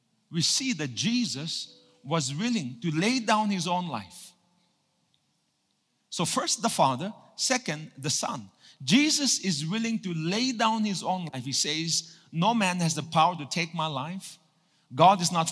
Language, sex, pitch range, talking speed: English, male, 150-210 Hz, 160 wpm